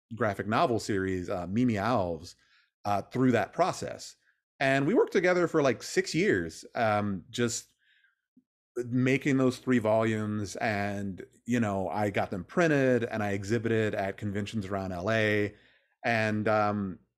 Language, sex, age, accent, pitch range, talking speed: English, male, 30-49, American, 105-140 Hz, 140 wpm